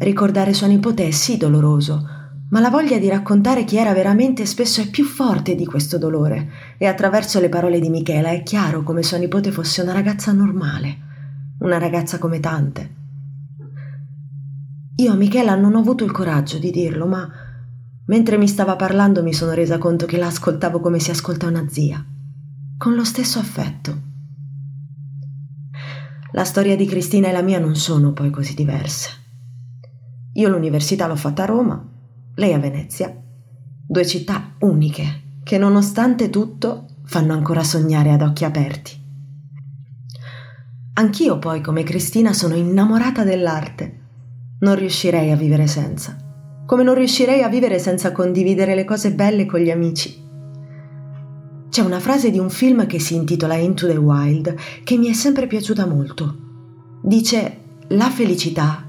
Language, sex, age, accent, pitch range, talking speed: Italian, female, 20-39, native, 145-195 Hz, 155 wpm